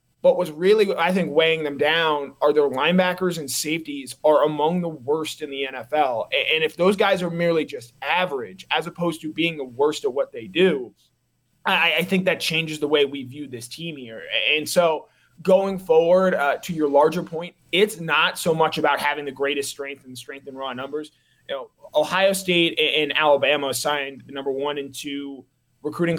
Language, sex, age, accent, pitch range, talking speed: English, male, 20-39, American, 135-165 Hz, 195 wpm